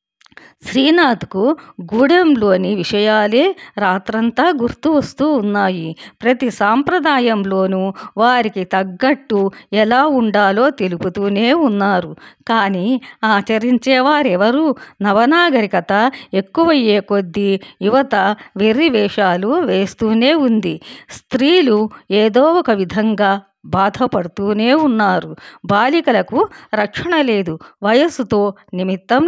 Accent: native